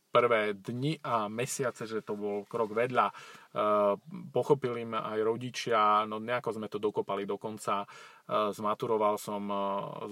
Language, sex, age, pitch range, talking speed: Slovak, male, 30-49, 105-125 Hz, 150 wpm